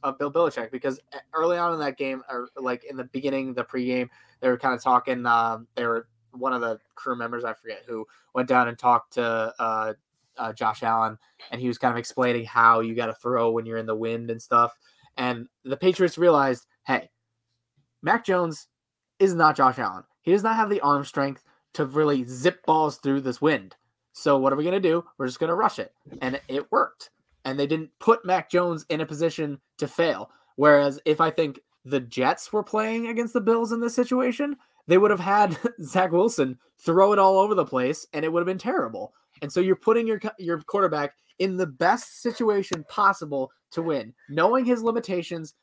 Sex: male